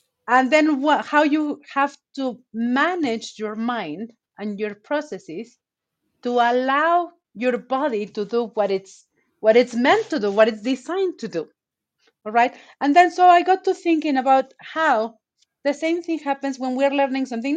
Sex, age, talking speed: female, 30-49, 170 wpm